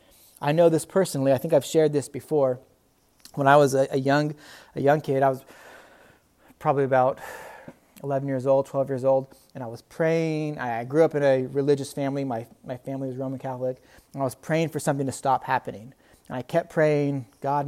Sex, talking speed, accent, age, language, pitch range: male, 205 wpm, American, 30-49, English, 130-150 Hz